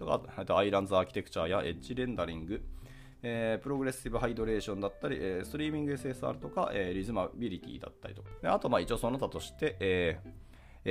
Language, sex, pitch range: Japanese, male, 85-130 Hz